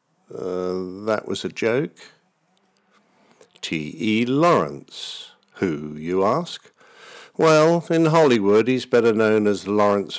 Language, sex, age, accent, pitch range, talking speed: English, male, 50-69, British, 105-155 Hz, 105 wpm